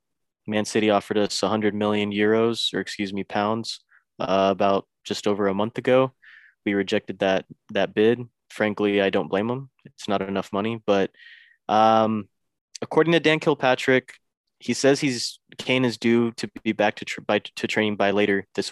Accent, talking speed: American, 170 wpm